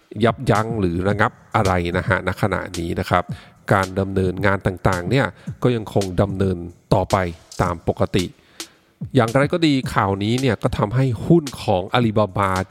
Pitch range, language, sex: 95-130 Hz, English, male